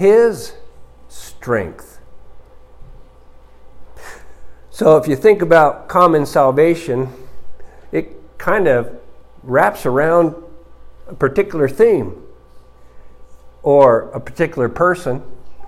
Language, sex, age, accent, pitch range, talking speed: English, male, 50-69, American, 115-185 Hz, 80 wpm